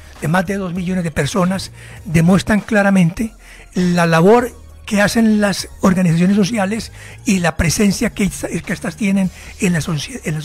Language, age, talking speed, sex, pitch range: Spanish, 60-79, 150 wpm, male, 165-205 Hz